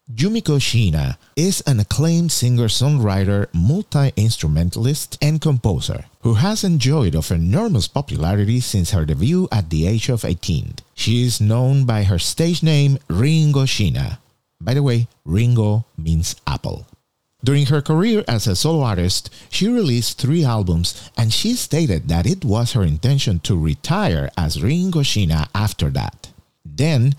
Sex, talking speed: male, 145 wpm